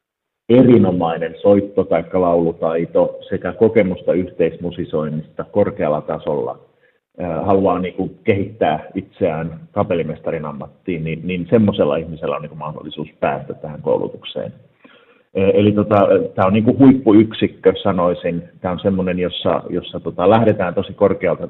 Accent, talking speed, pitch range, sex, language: native, 90 wpm, 85-105 Hz, male, Finnish